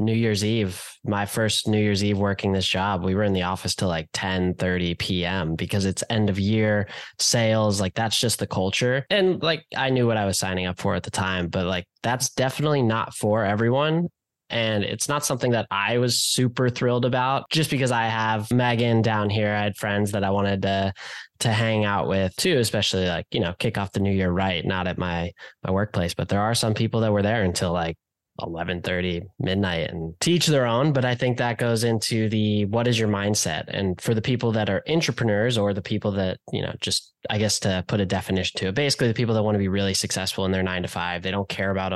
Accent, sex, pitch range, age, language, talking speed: American, male, 95-120 Hz, 10-29, English, 235 wpm